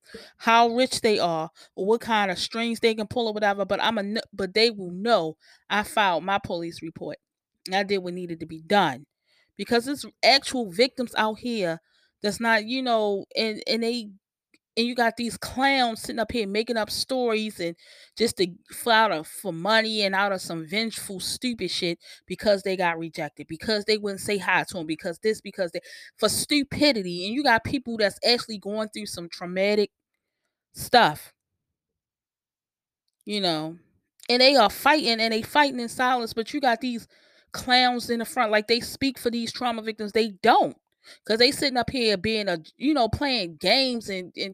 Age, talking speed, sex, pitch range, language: 20-39, 190 wpm, female, 190-240 Hz, English